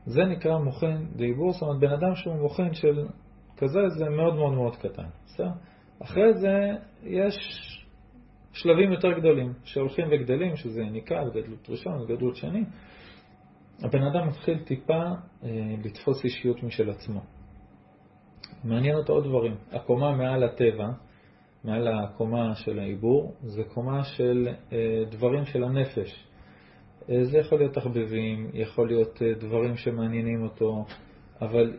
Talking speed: 130 wpm